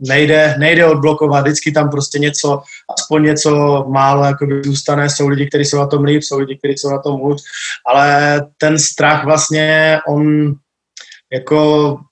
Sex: male